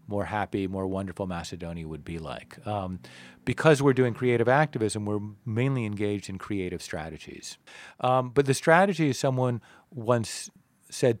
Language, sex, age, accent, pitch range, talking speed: English, male, 40-59, American, 105-140 Hz, 145 wpm